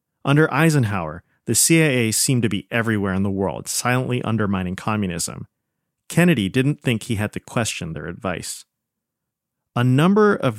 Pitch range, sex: 100-135 Hz, male